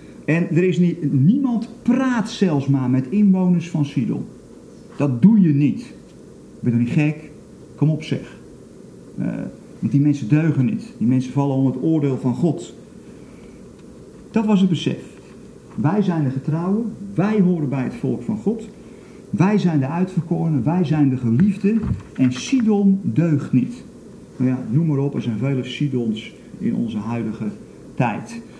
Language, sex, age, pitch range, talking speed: Dutch, male, 50-69, 130-195 Hz, 165 wpm